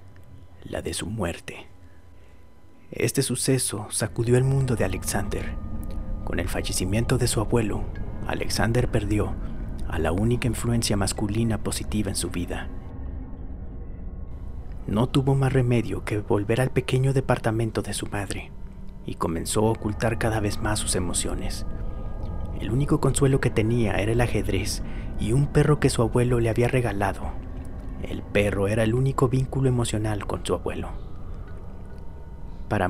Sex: male